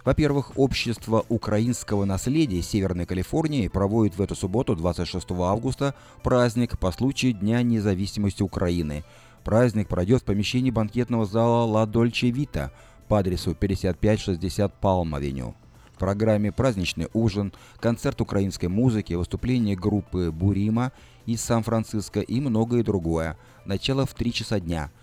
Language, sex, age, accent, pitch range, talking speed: Russian, male, 30-49, native, 95-120 Hz, 125 wpm